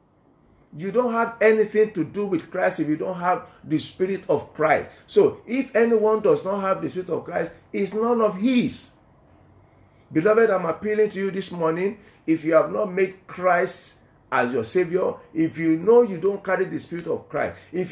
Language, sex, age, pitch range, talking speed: English, male, 50-69, 155-210 Hz, 190 wpm